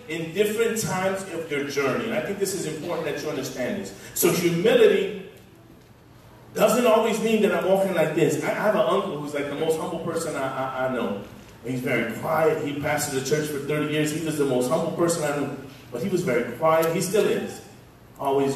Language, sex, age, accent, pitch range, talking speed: English, male, 30-49, American, 150-210 Hz, 215 wpm